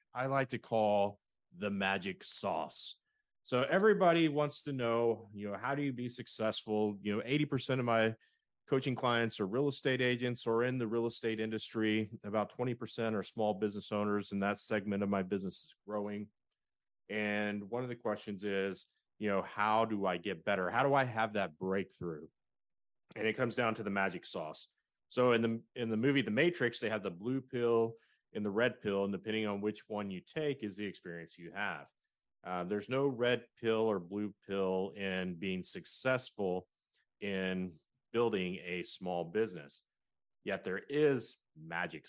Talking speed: 180 wpm